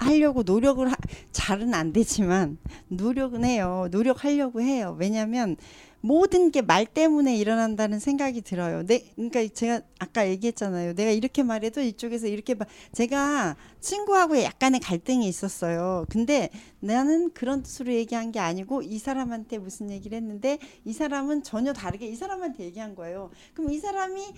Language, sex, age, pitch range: Korean, female, 40-59, 200-275 Hz